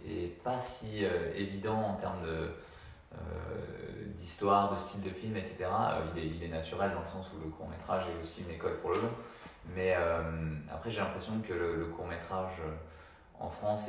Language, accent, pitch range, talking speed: French, French, 80-100 Hz, 195 wpm